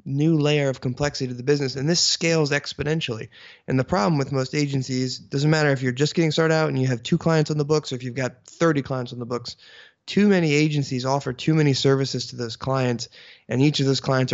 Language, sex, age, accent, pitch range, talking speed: English, male, 20-39, American, 120-140 Hz, 240 wpm